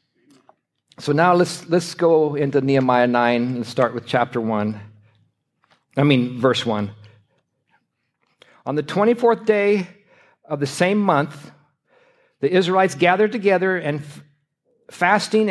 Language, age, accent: English, 60-79, American